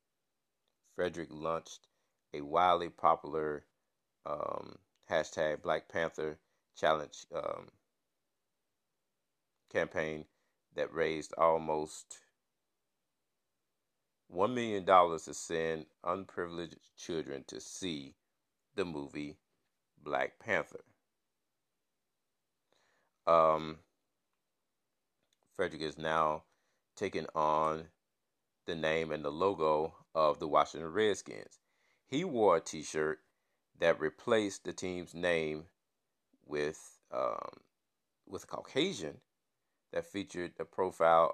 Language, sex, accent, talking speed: English, male, American, 85 wpm